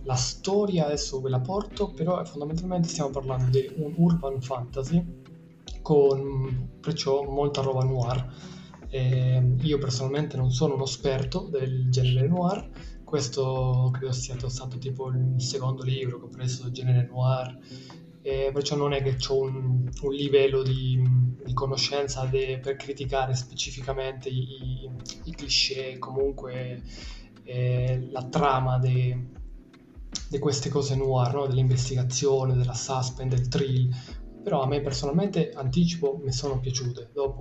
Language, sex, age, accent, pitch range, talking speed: Italian, male, 20-39, native, 130-140 Hz, 140 wpm